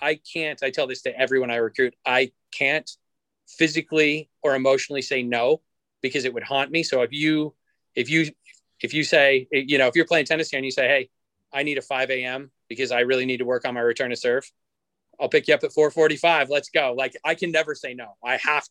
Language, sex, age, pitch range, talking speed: English, male, 30-49, 125-150 Hz, 230 wpm